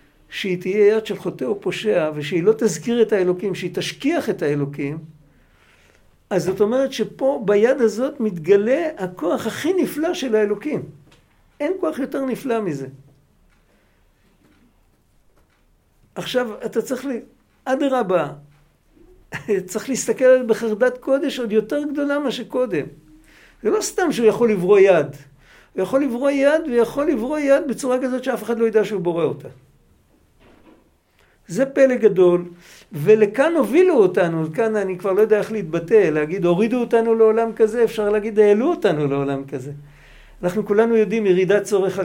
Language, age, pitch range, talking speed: Hebrew, 60-79, 175-245 Hz, 140 wpm